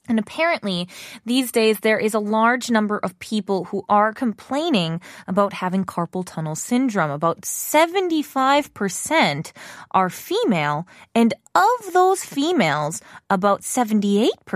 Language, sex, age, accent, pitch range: Korean, female, 20-39, American, 175-225 Hz